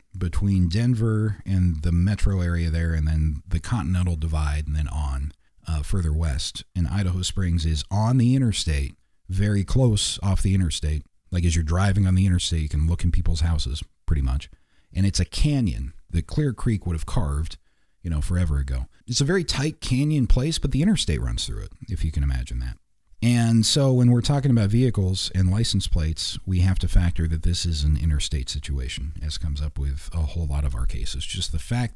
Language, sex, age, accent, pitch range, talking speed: English, male, 40-59, American, 80-115 Hz, 205 wpm